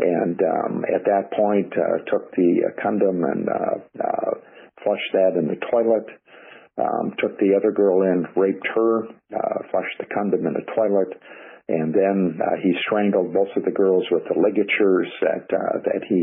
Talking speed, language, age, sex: 180 wpm, English, 50-69, male